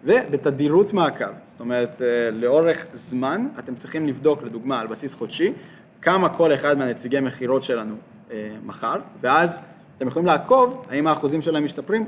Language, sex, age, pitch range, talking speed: Hebrew, male, 20-39, 130-180 Hz, 145 wpm